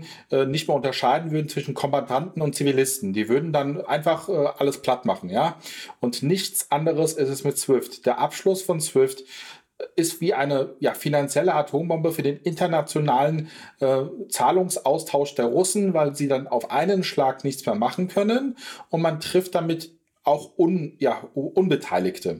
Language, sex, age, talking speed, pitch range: German, male, 40-59, 155 wpm, 140-170 Hz